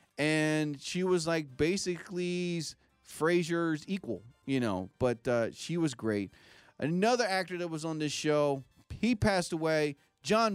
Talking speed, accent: 140 wpm, American